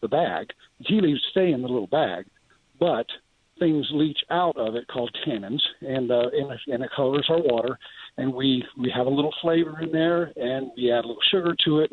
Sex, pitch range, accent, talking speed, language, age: male, 125-155 Hz, American, 215 wpm, English, 60-79